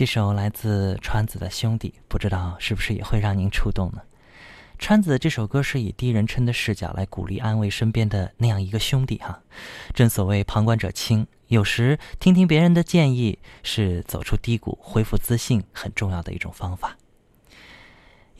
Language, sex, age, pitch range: Chinese, male, 20-39, 95-115 Hz